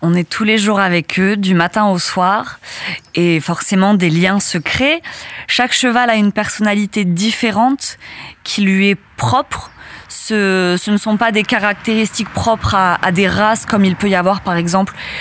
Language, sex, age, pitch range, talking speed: French, female, 20-39, 195-235 Hz, 180 wpm